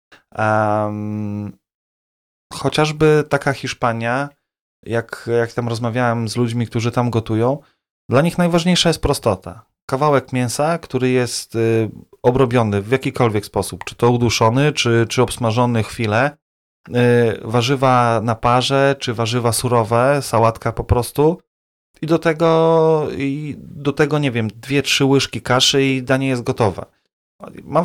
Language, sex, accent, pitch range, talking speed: Polish, male, native, 115-140 Hz, 130 wpm